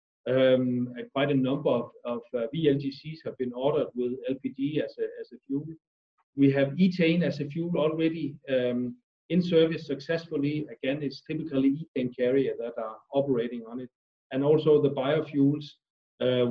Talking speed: 160 wpm